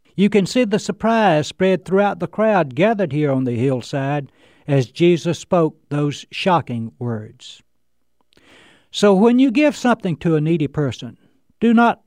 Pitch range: 130-195 Hz